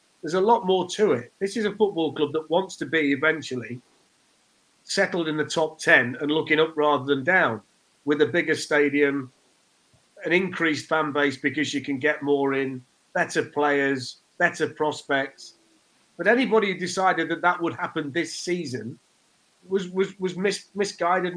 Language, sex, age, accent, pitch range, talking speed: English, male, 40-59, British, 150-190 Hz, 170 wpm